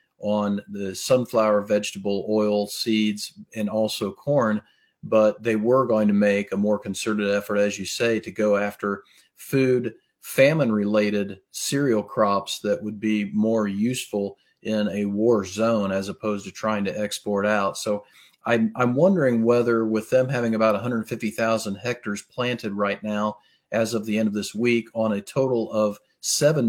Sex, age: male, 40-59